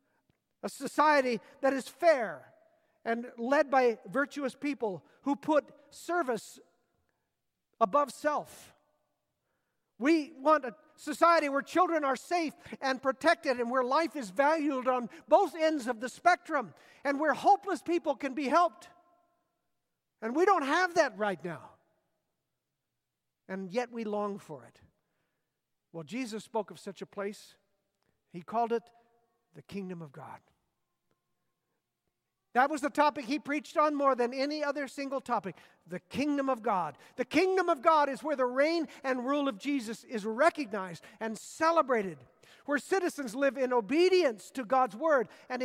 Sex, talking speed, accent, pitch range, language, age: male, 145 wpm, American, 230-305 Hz, English, 50-69